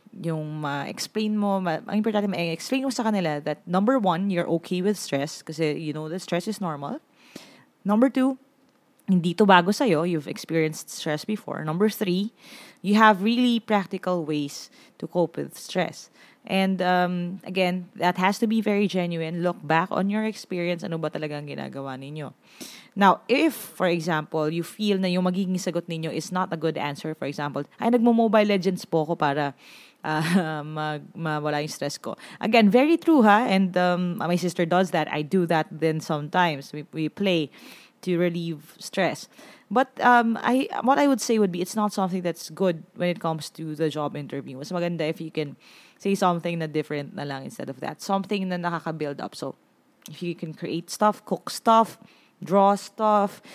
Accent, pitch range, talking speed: Filipino, 160-210 Hz, 185 wpm